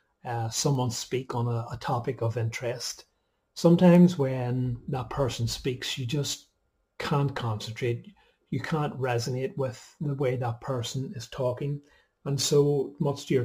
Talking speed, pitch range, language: 145 wpm, 120-140 Hz, English